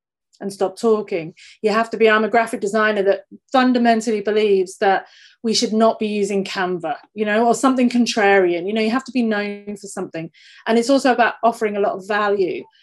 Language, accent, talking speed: English, British, 205 wpm